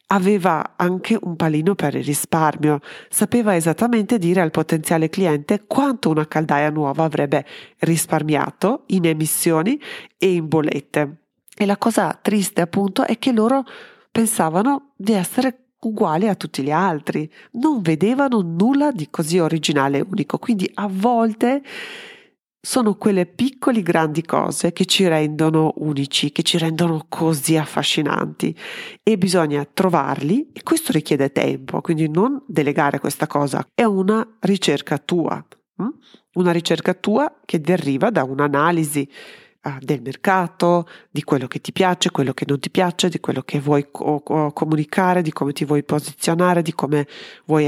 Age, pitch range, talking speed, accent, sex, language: 40-59, 155-210 Hz, 140 wpm, native, female, Italian